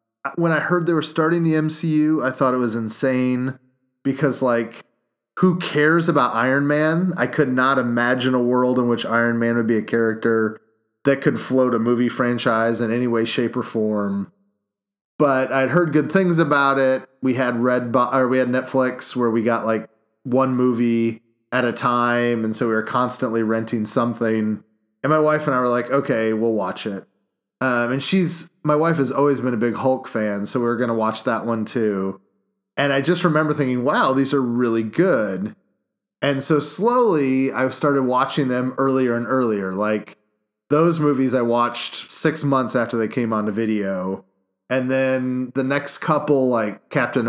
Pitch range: 115-135 Hz